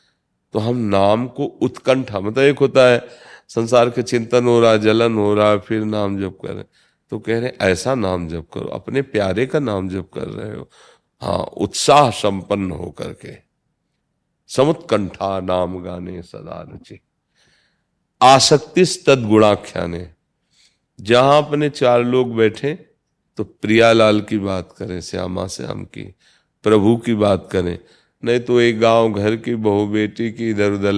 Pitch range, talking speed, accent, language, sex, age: 100-120 Hz, 150 wpm, native, Hindi, male, 40-59